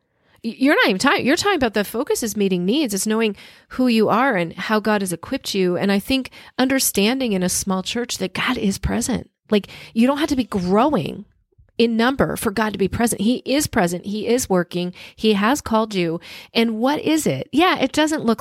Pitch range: 185-240 Hz